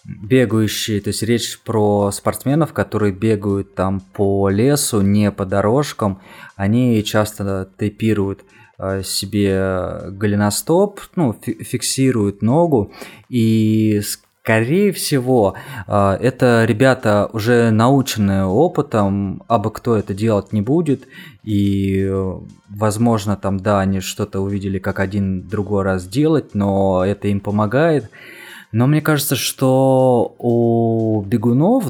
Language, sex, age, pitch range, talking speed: Russian, male, 20-39, 100-125 Hz, 110 wpm